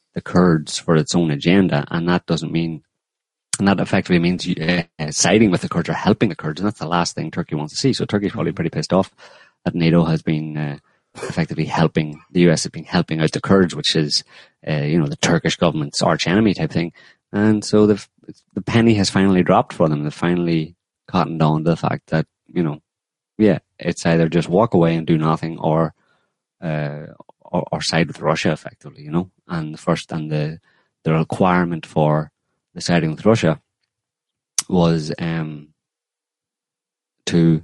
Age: 30-49